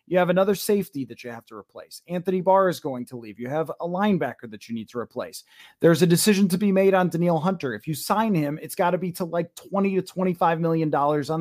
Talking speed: 250 wpm